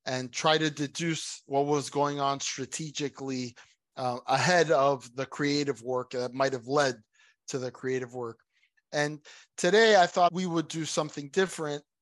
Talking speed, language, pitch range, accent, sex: 160 wpm, English, 130-155 Hz, American, male